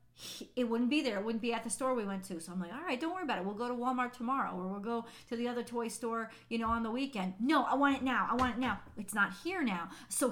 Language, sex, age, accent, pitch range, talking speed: English, female, 40-59, American, 205-255 Hz, 315 wpm